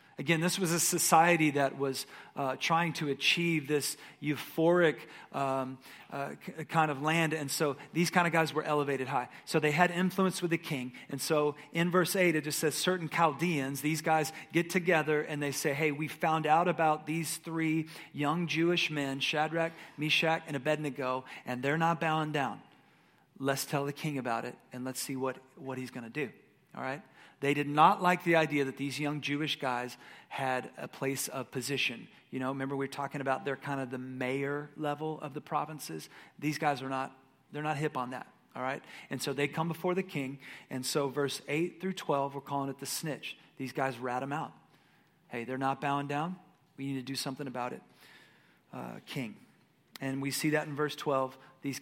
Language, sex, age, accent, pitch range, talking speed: English, male, 40-59, American, 135-160 Hz, 205 wpm